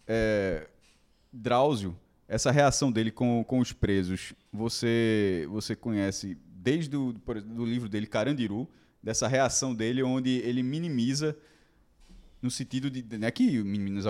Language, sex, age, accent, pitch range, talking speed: Portuguese, male, 20-39, Brazilian, 120-160 Hz, 140 wpm